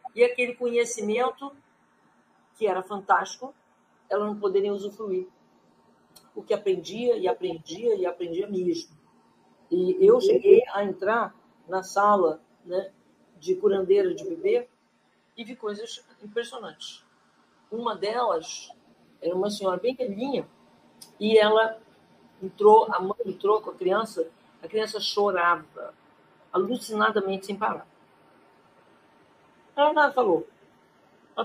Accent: Brazilian